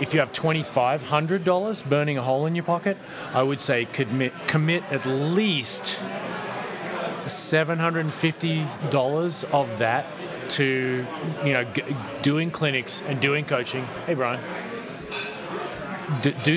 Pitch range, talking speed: 125-165 Hz, 110 wpm